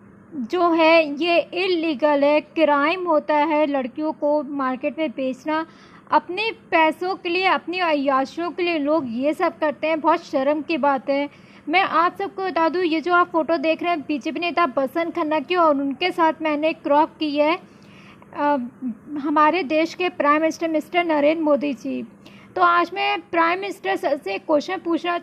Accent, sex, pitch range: native, female, 310-360 Hz